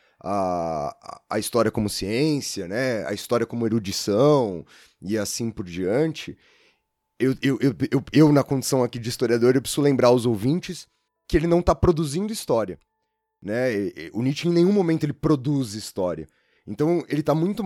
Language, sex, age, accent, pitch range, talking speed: Portuguese, male, 20-39, Brazilian, 115-165 Hz, 165 wpm